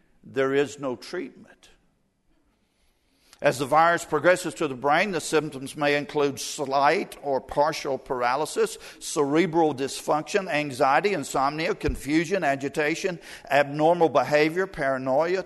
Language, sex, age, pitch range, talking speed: English, male, 50-69, 145-175 Hz, 110 wpm